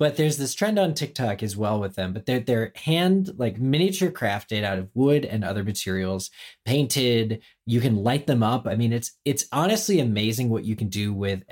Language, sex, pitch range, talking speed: English, male, 100-130 Hz, 210 wpm